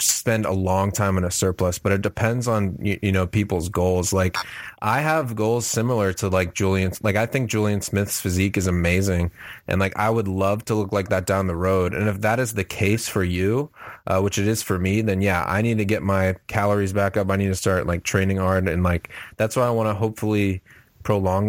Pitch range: 95-110 Hz